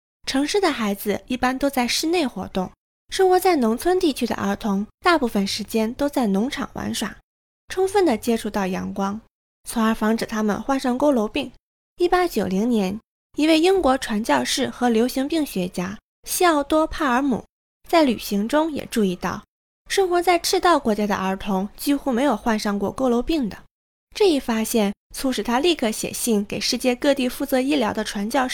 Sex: female